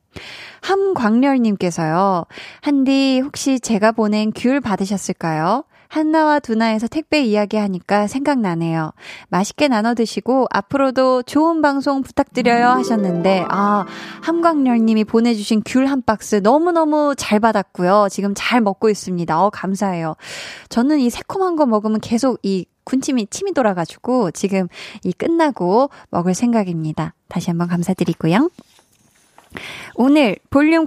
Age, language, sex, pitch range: 20-39, Korean, female, 195-275 Hz